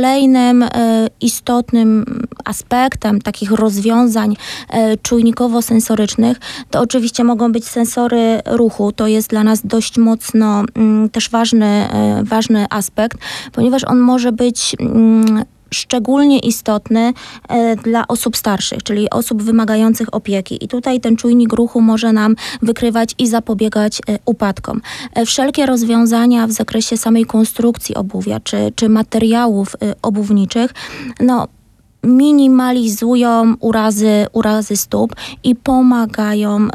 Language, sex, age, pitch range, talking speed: Polish, female, 20-39, 215-235 Hz, 105 wpm